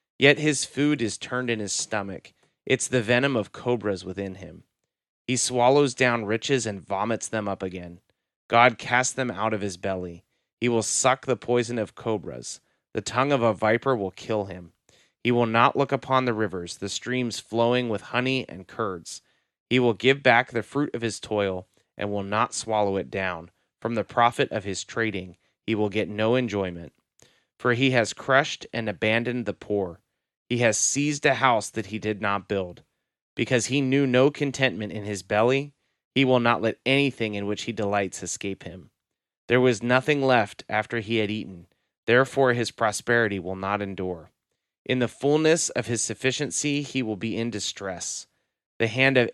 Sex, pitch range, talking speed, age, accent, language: male, 100-125 Hz, 185 wpm, 30-49, American, English